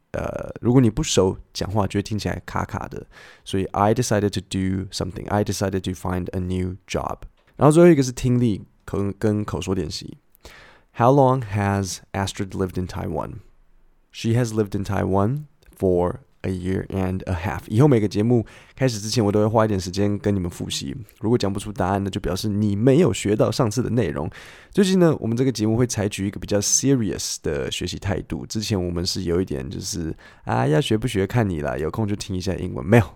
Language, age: Chinese, 20-39